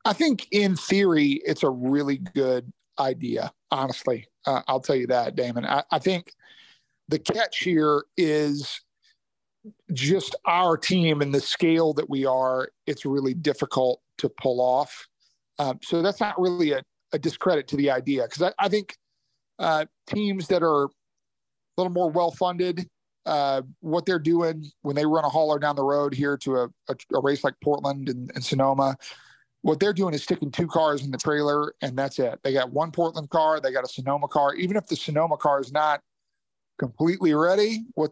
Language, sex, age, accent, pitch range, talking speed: English, male, 40-59, American, 140-175 Hz, 180 wpm